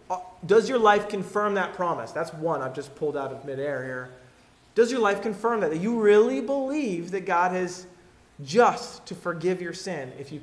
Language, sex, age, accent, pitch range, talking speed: English, male, 30-49, American, 155-205 Hz, 195 wpm